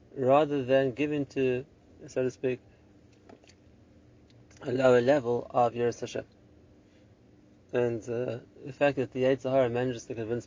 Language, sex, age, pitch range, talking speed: English, male, 30-49, 115-140 Hz, 130 wpm